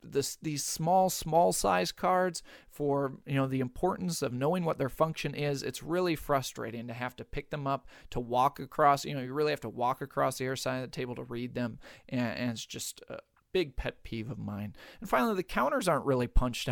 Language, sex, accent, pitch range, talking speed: English, male, American, 125-170 Hz, 225 wpm